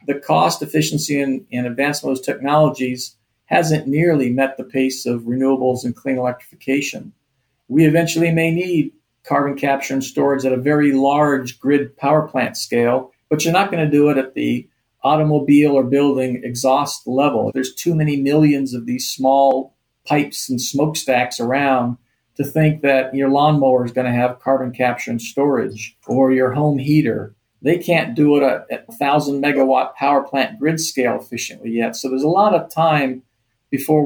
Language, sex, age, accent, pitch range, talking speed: English, male, 50-69, American, 125-150 Hz, 175 wpm